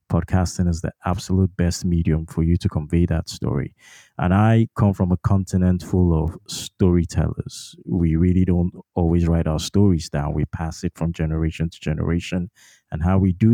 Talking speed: 175 wpm